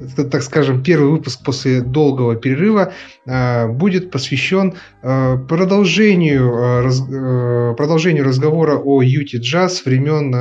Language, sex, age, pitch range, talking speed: Russian, male, 30-49, 125-150 Hz, 120 wpm